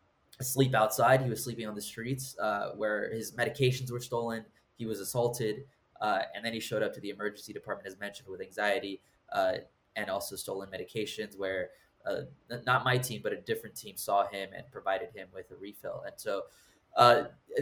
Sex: male